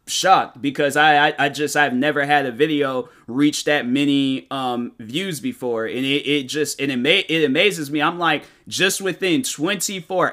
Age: 20-39